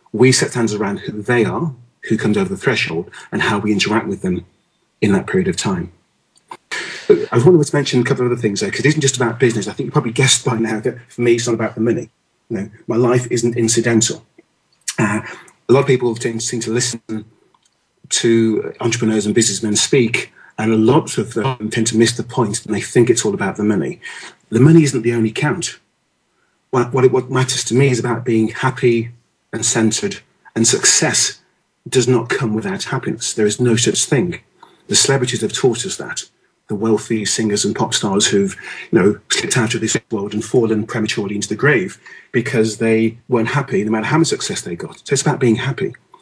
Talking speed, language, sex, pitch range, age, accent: 210 wpm, English, male, 110-130 Hz, 40-59, British